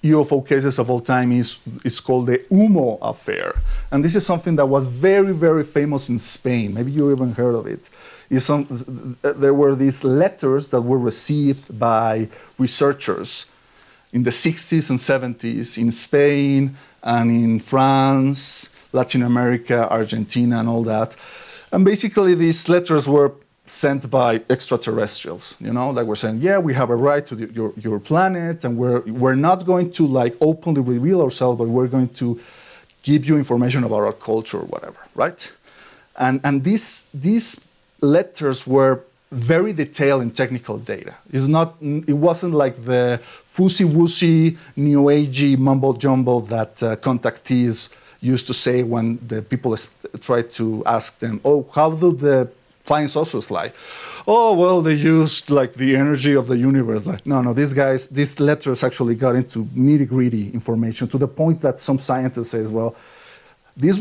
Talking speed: 165 wpm